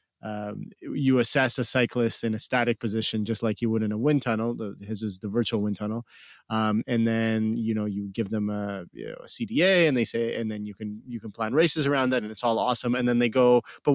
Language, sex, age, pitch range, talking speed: English, male, 30-49, 110-120 Hz, 240 wpm